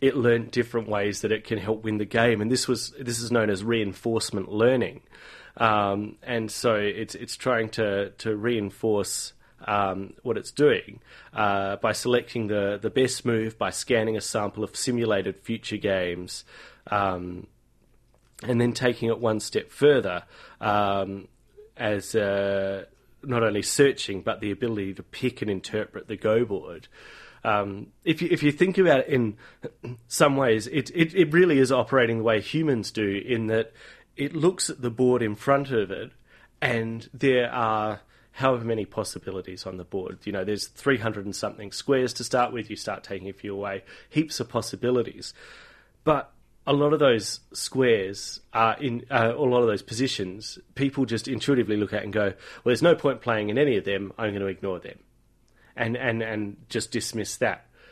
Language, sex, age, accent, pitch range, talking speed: English, male, 30-49, Australian, 105-125 Hz, 180 wpm